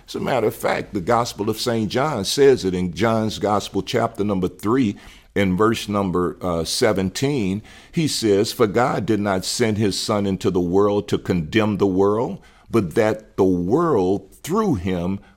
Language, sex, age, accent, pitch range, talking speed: English, male, 50-69, American, 90-115 Hz, 175 wpm